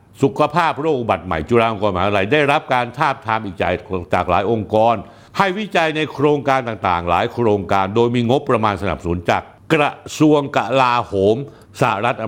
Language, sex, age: Thai, male, 60-79